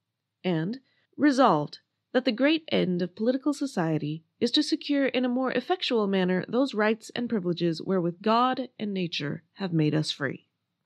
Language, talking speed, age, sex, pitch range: English, 160 wpm, 20-39, female, 180-250 Hz